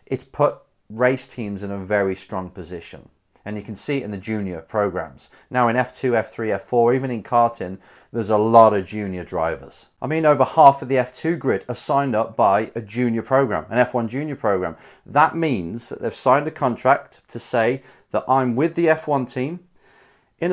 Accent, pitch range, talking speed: British, 110-140 Hz, 195 wpm